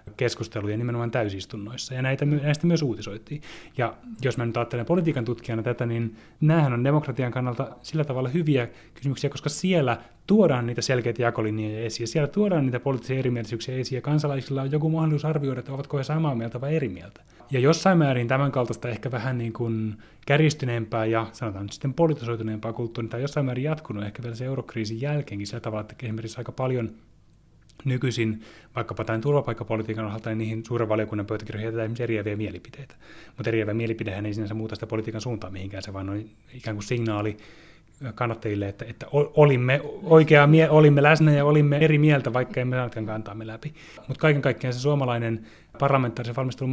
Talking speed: 175 wpm